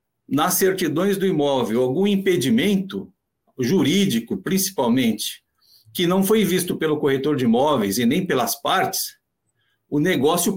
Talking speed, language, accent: 125 wpm, Portuguese, Brazilian